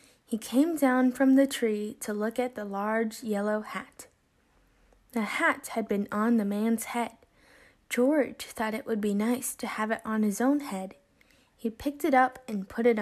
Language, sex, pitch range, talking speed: English, female, 210-265 Hz, 190 wpm